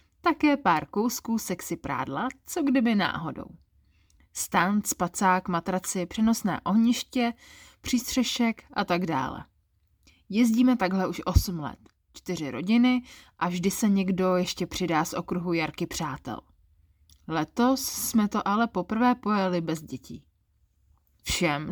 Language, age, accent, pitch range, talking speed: Czech, 20-39, native, 145-220 Hz, 120 wpm